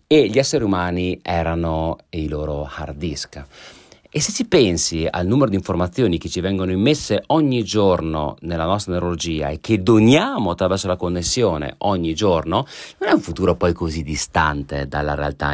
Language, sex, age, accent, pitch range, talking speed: Italian, male, 40-59, native, 80-105 Hz, 165 wpm